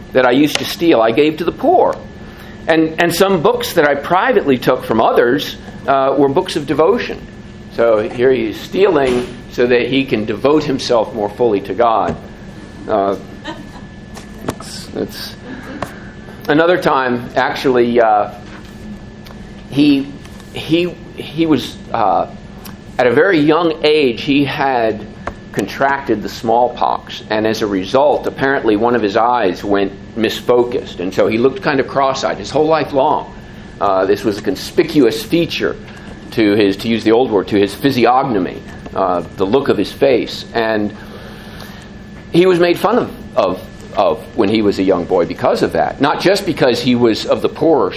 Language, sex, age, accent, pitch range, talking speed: English, male, 50-69, American, 110-145 Hz, 160 wpm